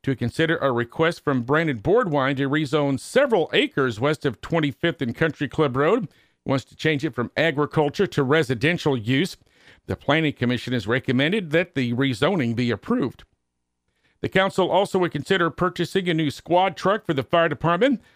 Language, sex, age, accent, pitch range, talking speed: English, male, 50-69, American, 135-170 Hz, 170 wpm